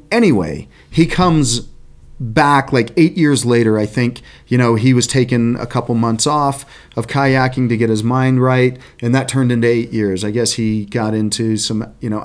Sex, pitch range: male, 105-135 Hz